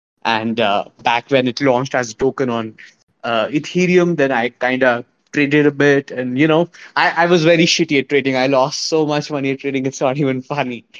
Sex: male